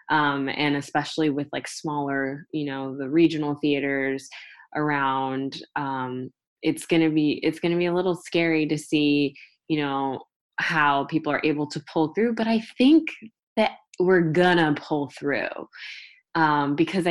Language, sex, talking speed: English, female, 160 wpm